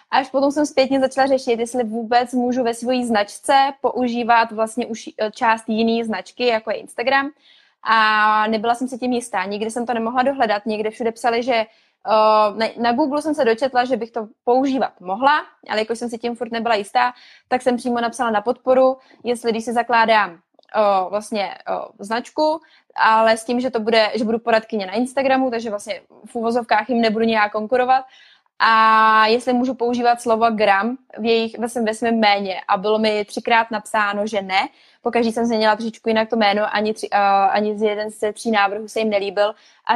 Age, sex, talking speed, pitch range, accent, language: 20-39, female, 180 wpm, 205-240 Hz, native, Czech